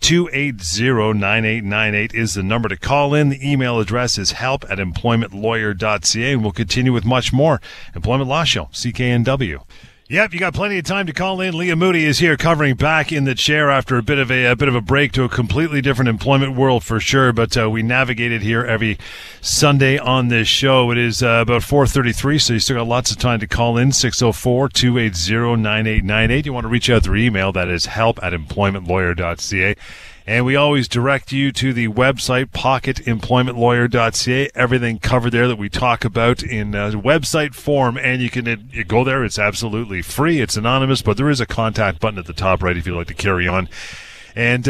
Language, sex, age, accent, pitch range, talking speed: English, male, 40-59, American, 110-135 Hz, 205 wpm